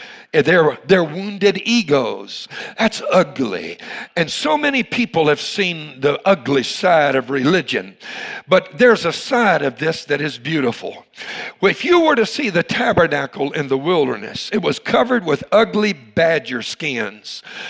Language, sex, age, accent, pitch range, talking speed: English, male, 60-79, American, 150-220 Hz, 140 wpm